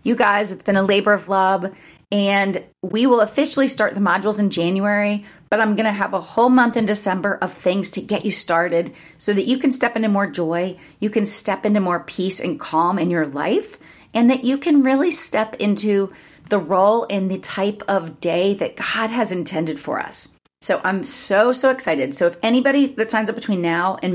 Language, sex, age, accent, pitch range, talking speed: English, female, 30-49, American, 185-230 Hz, 215 wpm